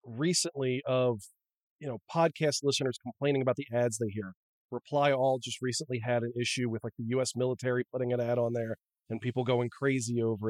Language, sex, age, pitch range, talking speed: English, male, 40-59, 125-150 Hz, 195 wpm